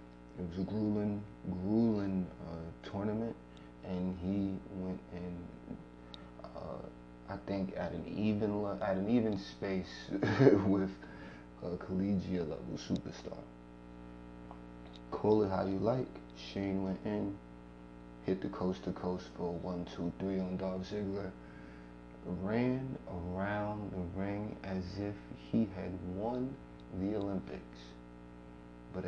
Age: 30-49